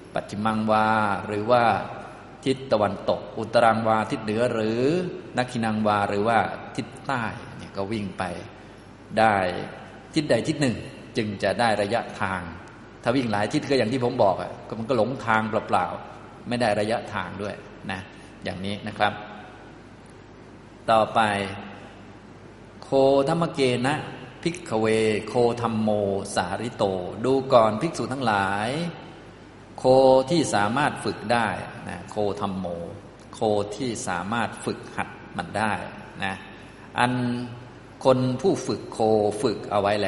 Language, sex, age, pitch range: Thai, male, 20-39, 100-125 Hz